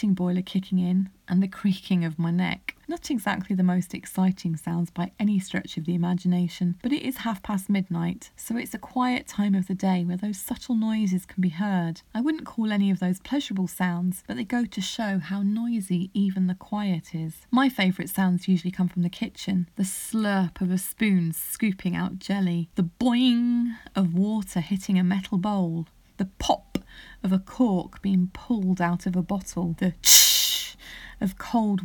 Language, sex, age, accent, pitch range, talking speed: English, female, 30-49, British, 180-220 Hz, 185 wpm